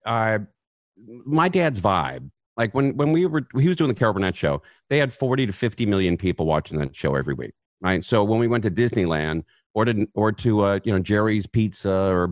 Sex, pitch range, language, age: male, 90-115 Hz, English, 50-69